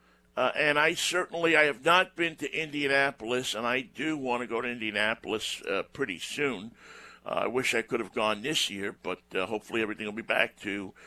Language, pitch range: English, 120-170 Hz